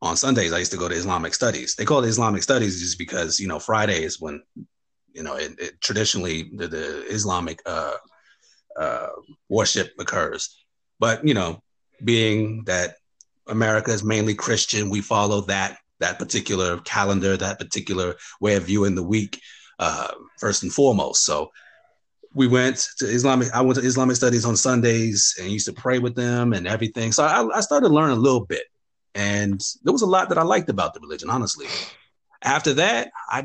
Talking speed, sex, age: 185 wpm, male, 30-49